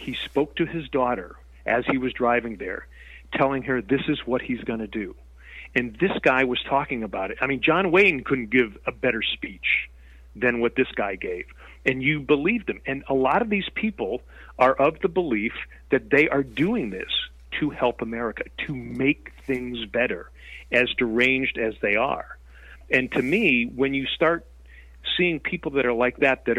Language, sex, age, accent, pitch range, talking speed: English, male, 40-59, American, 110-155 Hz, 190 wpm